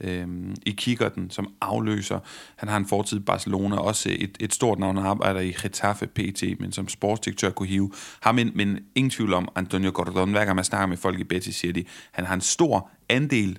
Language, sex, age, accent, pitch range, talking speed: Danish, male, 30-49, native, 95-115 Hz, 205 wpm